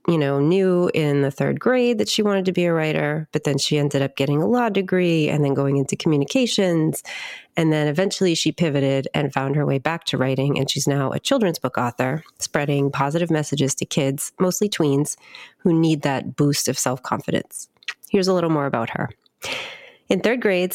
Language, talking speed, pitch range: English, 200 wpm, 140-180 Hz